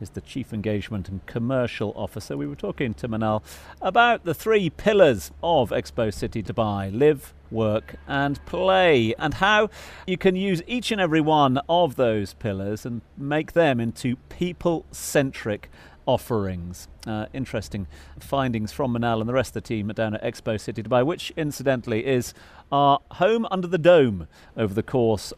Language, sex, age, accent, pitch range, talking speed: English, male, 40-59, British, 105-145 Hz, 165 wpm